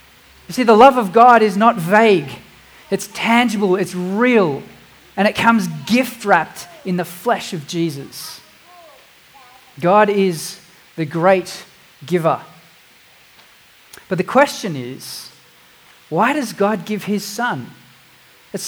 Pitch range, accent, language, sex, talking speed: 185-225 Hz, Australian, English, male, 120 wpm